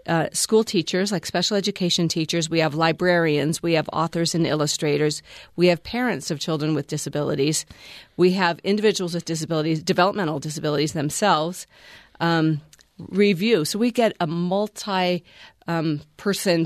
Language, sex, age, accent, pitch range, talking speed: English, female, 40-59, American, 160-205 Hz, 135 wpm